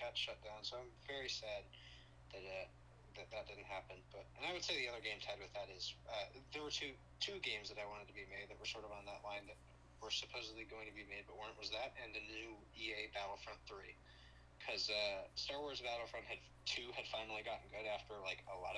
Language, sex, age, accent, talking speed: English, male, 20-39, American, 240 wpm